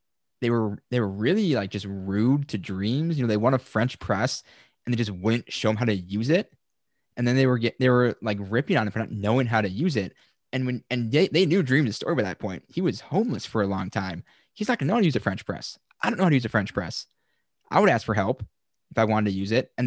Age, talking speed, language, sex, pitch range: 20-39, 285 wpm, English, male, 105-130 Hz